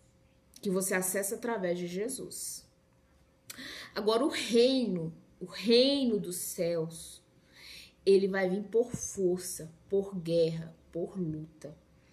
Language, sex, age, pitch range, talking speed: Portuguese, female, 20-39, 180-240 Hz, 110 wpm